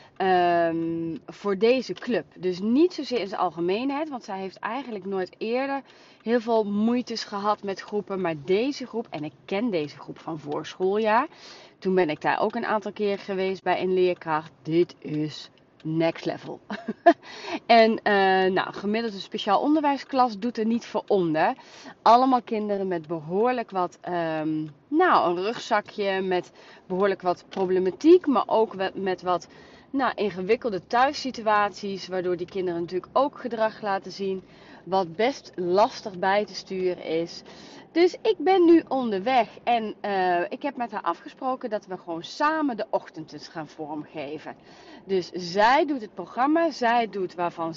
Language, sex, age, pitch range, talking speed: Dutch, female, 30-49, 175-230 Hz, 155 wpm